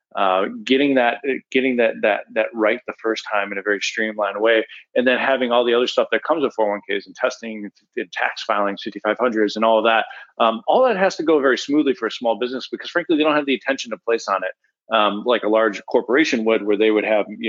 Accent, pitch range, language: American, 105-140 Hz, English